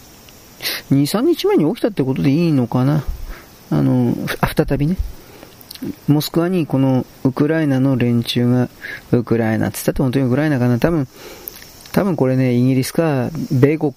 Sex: male